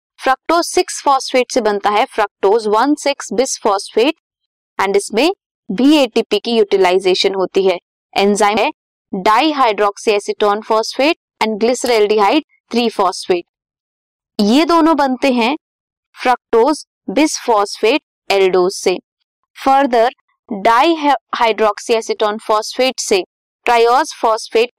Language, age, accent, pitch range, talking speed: Hindi, 20-39, native, 210-295 Hz, 85 wpm